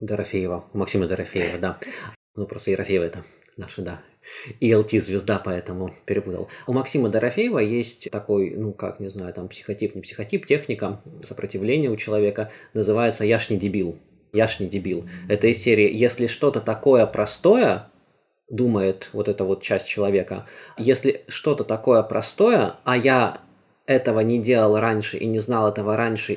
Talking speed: 155 wpm